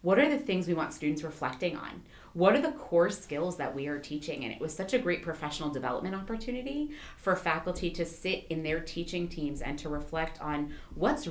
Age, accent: 30-49, American